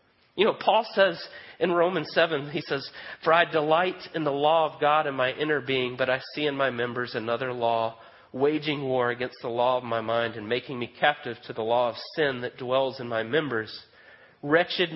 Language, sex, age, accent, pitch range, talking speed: English, male, 40-59, American, 125-165 Hz, 210 wpm